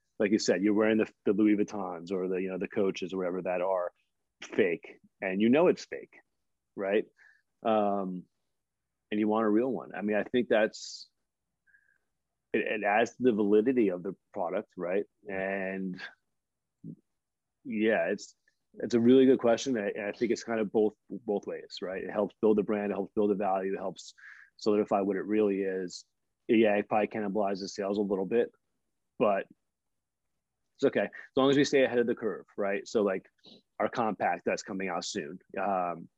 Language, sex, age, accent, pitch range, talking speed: English, male, 30-49, American, 100-115 Hz, 185 wpm